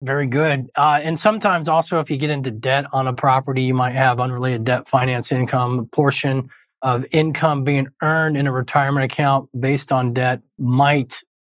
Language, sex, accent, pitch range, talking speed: English, male, American, 130-155 Hz, 185 wpm